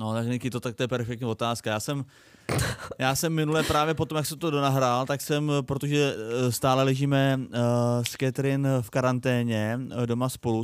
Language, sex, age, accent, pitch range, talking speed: Czech, male, 20-39, native, 120-155 Hz, 175 wpm